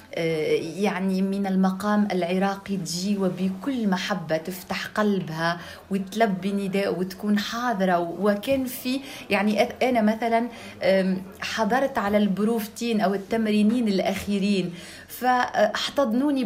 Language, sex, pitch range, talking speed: Arabic, female, 195-235 Hz, 90 wpm